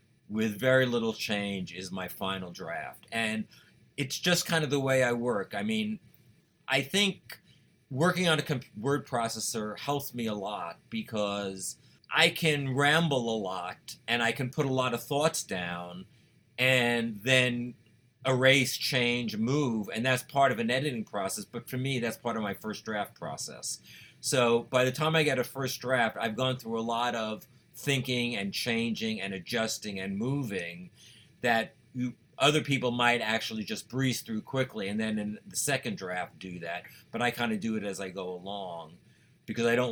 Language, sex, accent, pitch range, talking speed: English, male, American, 110-135 Hz, 180 wpm